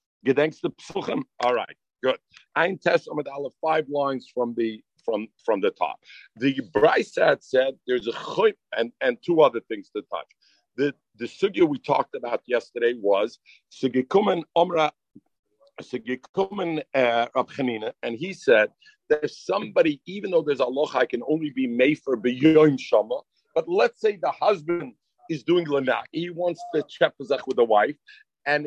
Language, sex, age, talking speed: English, male, 50-69, 150 wpm